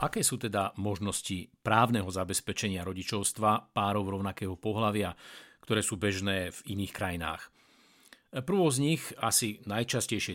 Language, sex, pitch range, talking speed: Slovak, male, 100-130 Hz, 120 wpm